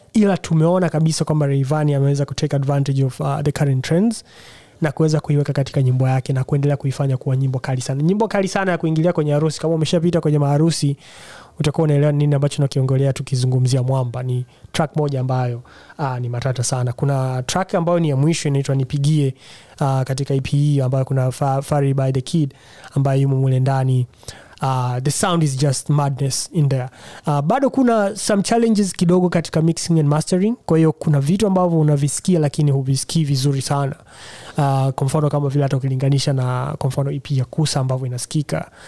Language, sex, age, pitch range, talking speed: Swahili, male, 20-39, 135-155 Hz, 175 wpm